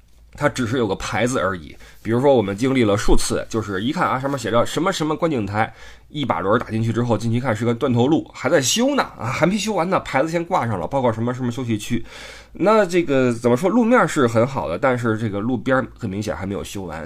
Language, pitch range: Chinese, 105-135 Hz